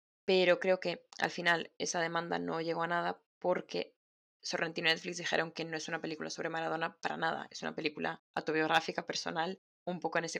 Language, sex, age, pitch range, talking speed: Spanish, female, 10-29, 175-210 Hz, 195 wpm